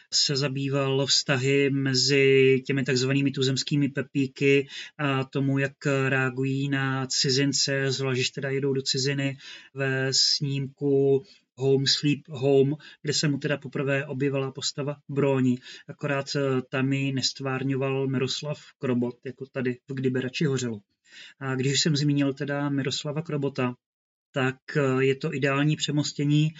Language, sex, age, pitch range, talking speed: Czech, male, 30-49, 135-145 Hz, 125 wpm